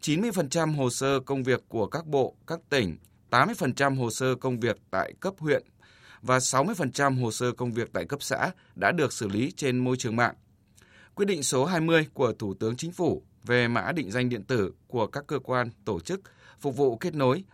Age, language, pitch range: 20-39, Vietnamese, 115-145 Hz